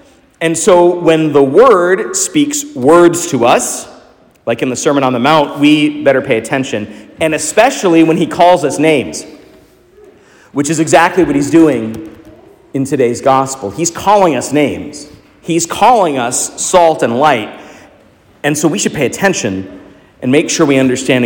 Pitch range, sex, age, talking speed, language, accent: 125-170 Hz, male, 40-59, 160 wpm, English, American